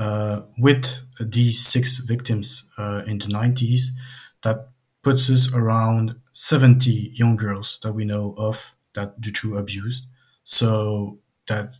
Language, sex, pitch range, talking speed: English, male, 105-125 Hz, 130 wpm